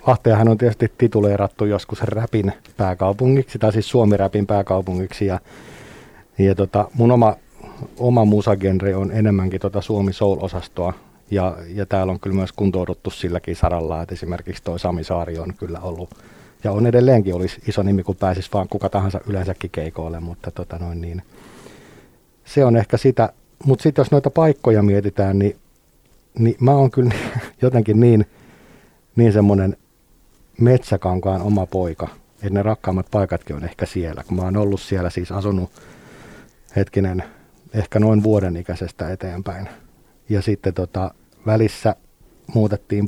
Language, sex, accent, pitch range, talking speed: Finnish, male, native, 95-110 Hz, 145 wpm